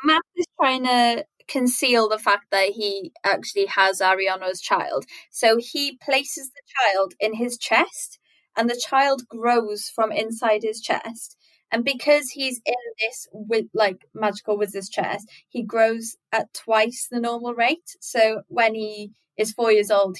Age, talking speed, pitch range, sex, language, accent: 20-39, 155 wpm, 205-250 Hz, female, English, British